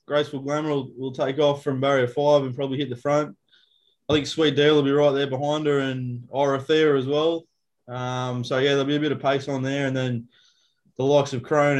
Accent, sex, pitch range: Australian, male, 130-145 Hz